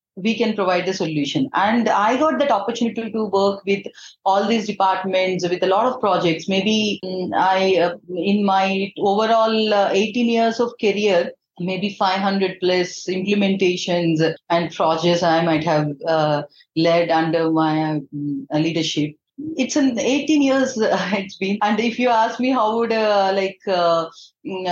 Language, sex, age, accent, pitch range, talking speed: English, female, 30-49, Indian, 185-245 Hz, 160 wpm